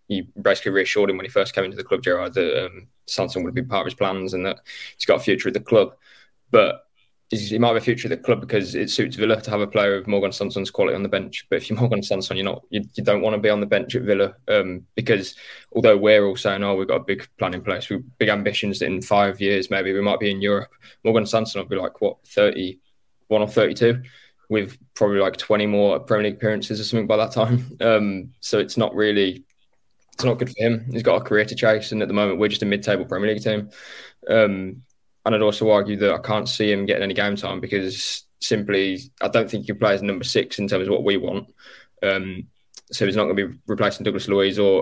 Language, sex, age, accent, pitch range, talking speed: English, male, 20-39, British, 100-110 Hz, 255 wpm